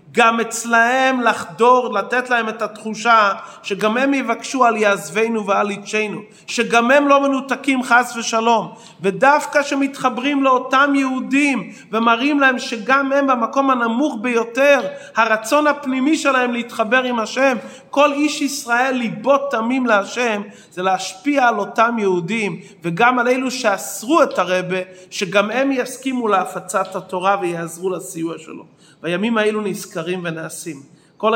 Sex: male